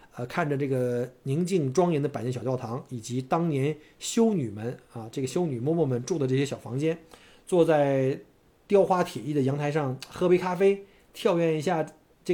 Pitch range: 130-180 Hz